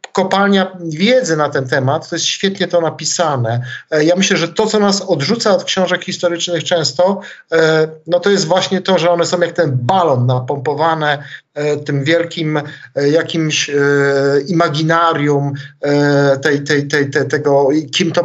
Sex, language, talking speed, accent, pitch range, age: male, Polish, 150 wpm, native, 140-175 Hz, 50-69